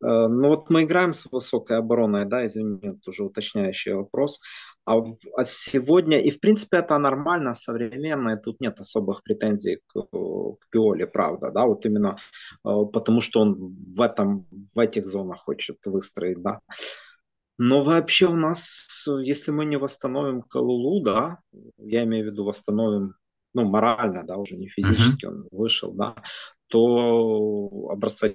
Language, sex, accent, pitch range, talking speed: Russian, male, native, 105-140 Hz, 150 wpm